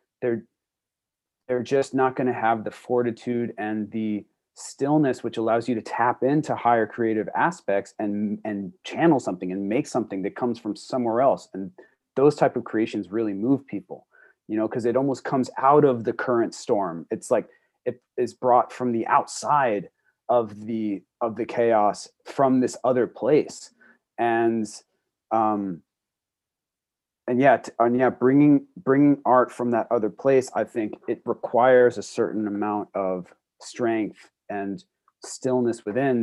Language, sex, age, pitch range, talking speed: English, male, 30-49, 100-125 Hz, 155 wpm